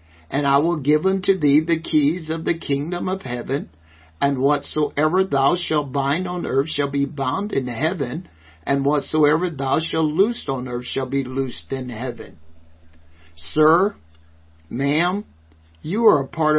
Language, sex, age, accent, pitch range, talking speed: English, male, 60-79, American, 120-180 Hz, 155 wpm